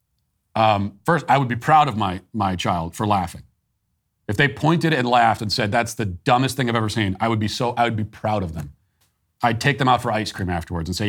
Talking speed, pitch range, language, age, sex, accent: 250 wpm, 100-125 Hz, English, 40-59, male, American